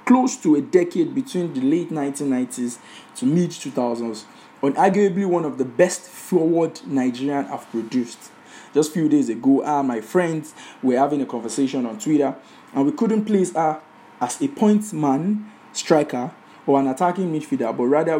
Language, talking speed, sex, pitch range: English, 170 wpm, male, 130-195 Hz